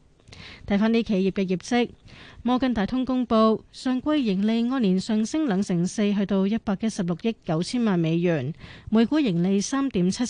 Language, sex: Chinese, female